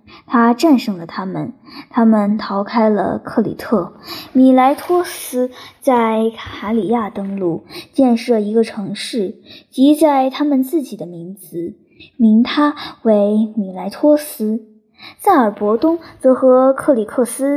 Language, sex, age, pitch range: Chinese, male, 10-29, 205-265 Hz